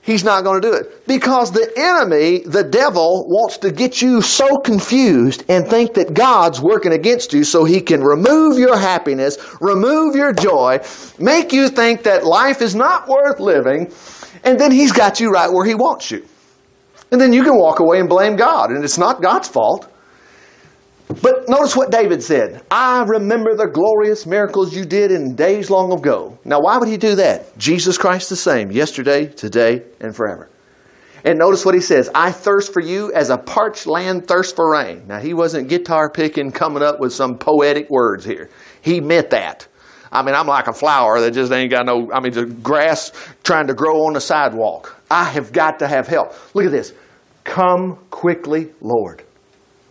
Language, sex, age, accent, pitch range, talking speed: English, male, 40-59, American, 155-230 Hz, 190 wpm